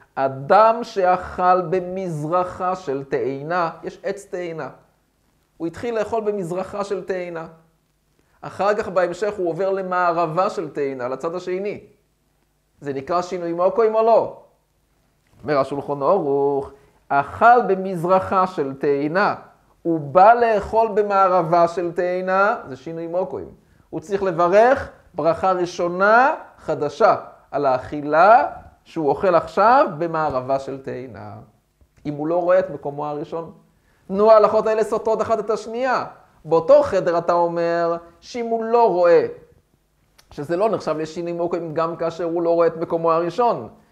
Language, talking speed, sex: Hebrew, 130 wpm, male